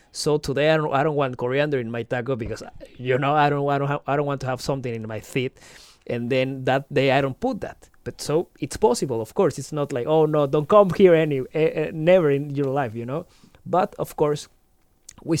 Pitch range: 130-160 Hz